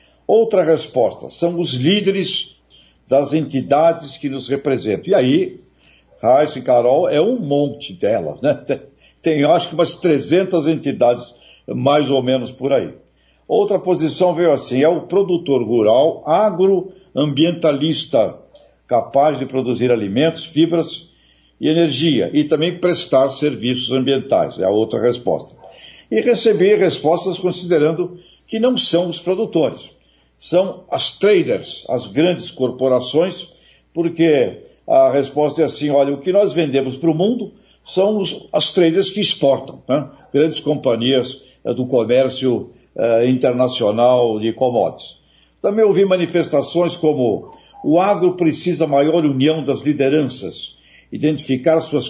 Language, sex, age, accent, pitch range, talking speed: Portuguese, male, 60-79, Brazilian, 135-175 Hz, 130 wpm